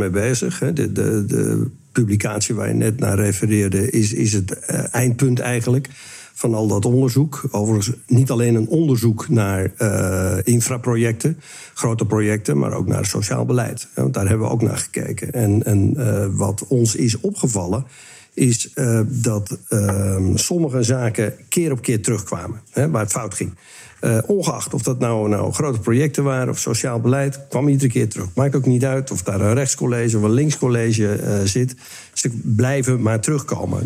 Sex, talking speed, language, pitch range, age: male, 170 wpm, Dutch, 110-130 Hz, 60-79